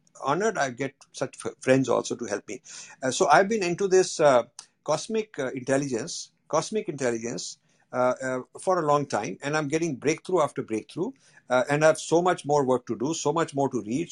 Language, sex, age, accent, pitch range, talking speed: Hindi, male, 50-69, native, 120-175 Hz, 205 wpm